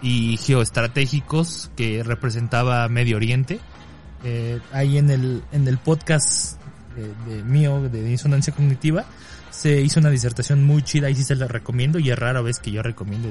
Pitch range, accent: 110-145 Hz, Mexican